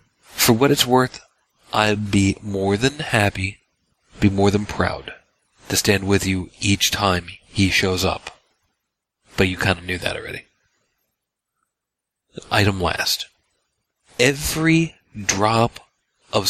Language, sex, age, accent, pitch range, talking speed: English, male, 40-59, American, 95-125 Hz, 125 wpm